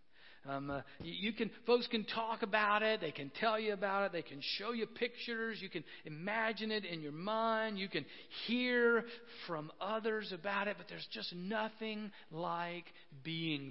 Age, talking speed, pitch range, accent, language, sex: 50-69, 175 wpm, 150-200 Hz, American, English, male